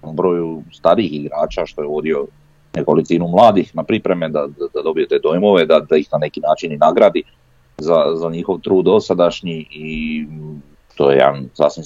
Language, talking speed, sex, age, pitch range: Croatian, 165 wpm, male, 40-59, 75-95 Hz